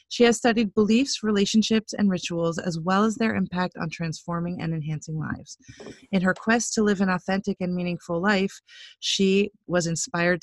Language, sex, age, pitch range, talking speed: English, female, 30-49, 175-225 Hz, 175 wpm